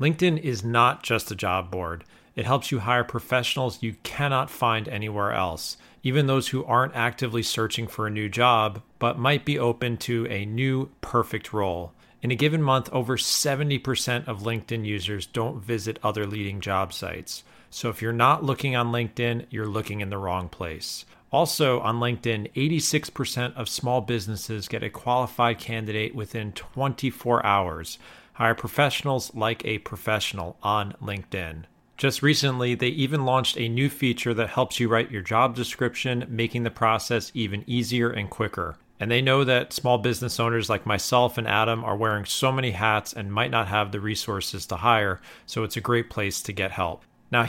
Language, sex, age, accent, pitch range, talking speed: English, male, 40-59, American, 105-125 Hz, 175 wpm